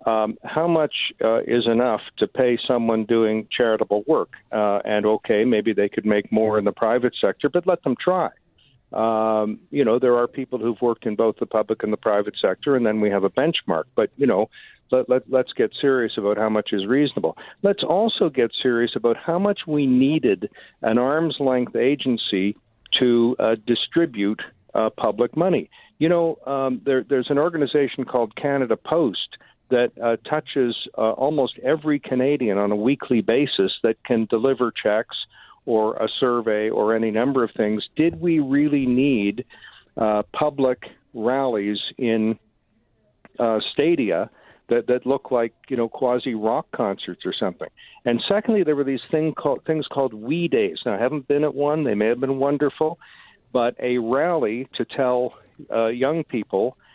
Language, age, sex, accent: English, 50-69, male, American